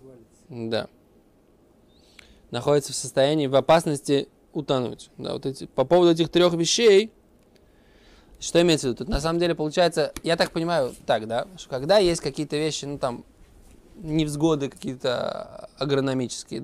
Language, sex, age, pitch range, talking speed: Russian, male, 20-39, 125-160 Hz, 140 wpm